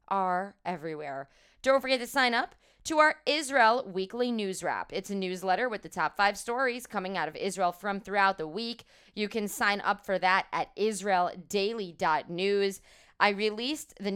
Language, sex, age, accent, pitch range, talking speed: English, female, 20-39, American, 180-220 Hz, 170 wpm